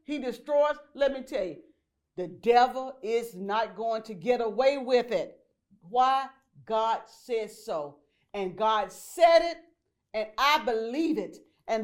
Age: 50-69